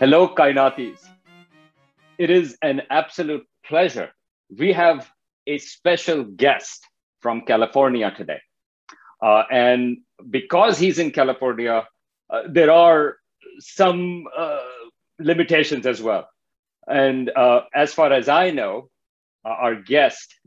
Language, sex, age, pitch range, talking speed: Urdu, male, 50-69, 125-170 Hz, 115 wpm